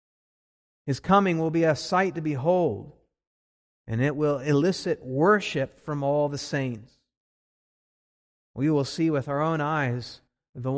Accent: American